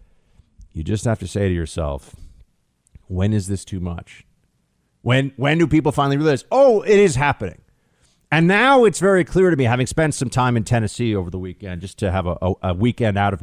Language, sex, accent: English, male, American